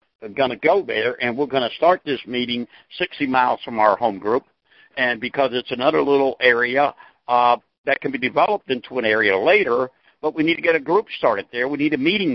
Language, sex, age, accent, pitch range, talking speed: English, male, 60-79, American, 125-170 Hz, 225 wpm